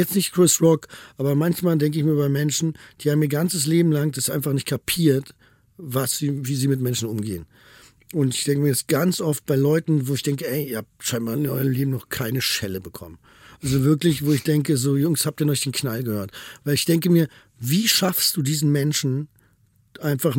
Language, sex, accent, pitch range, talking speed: German, male, German, 130-165 Hz, 215 wpm